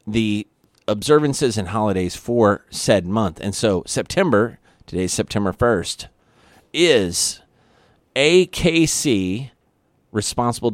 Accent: American